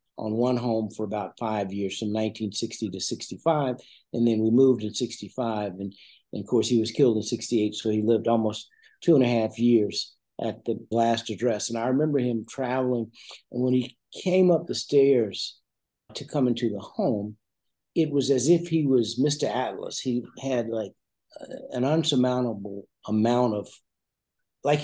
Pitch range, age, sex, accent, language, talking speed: 115-155 Hz, 60-79, male, American, English, 175 wpm